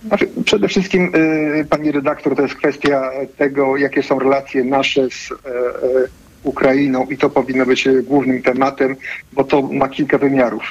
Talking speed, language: 140 wpm, Polish